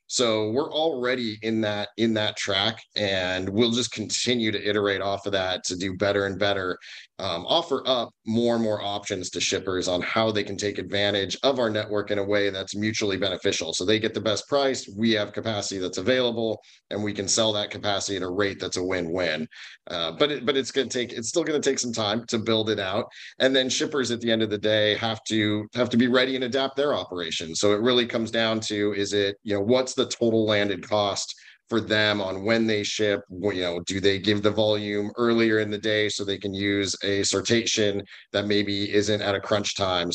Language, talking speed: English, 225 wpm